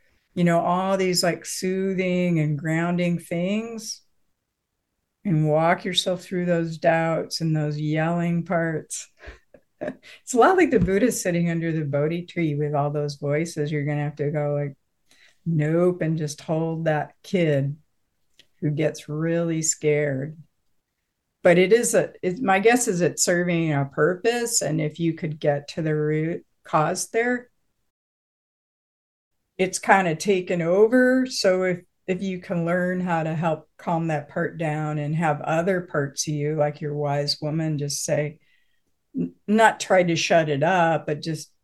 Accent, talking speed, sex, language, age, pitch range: American, 160 wpm, female, English, 50-69, 150-180 Hz